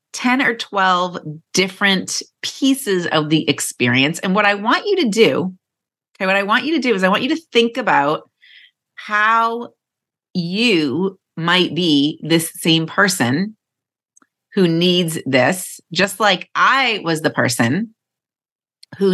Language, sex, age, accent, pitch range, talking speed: English, female, 30-49, American, 160-225 Hz, 145 wpm